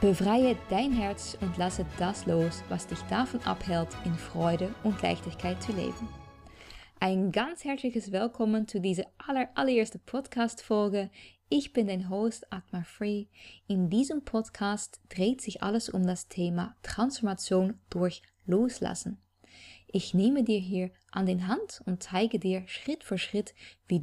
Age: 20-39